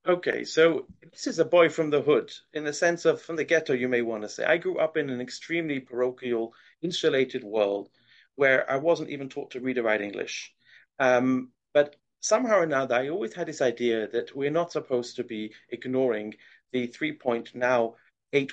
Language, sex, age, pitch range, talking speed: English, male, 40-59, 120-165 Hz, 200 wpm